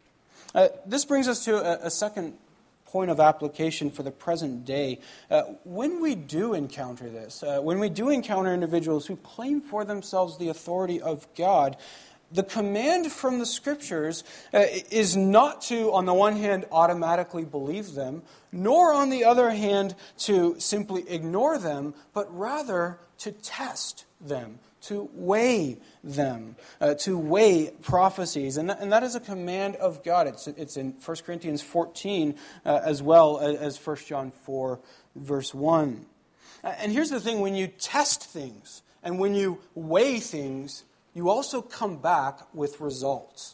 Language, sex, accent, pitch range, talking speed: English, male, American, 150-205 Hz, 160 wpm